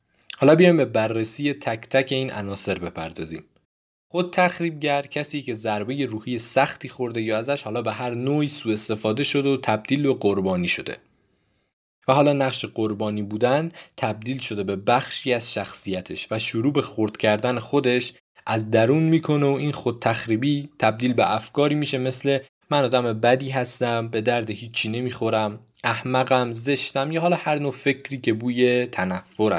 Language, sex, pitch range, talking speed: Persian, male, 110-140 Hz, 160 wpm